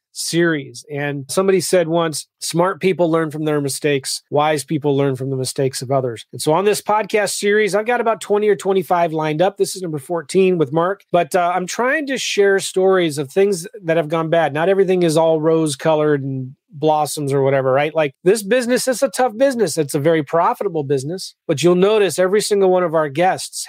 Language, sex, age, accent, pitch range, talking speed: English, male, 30-49, American, 150-190 Hz, 215 wpm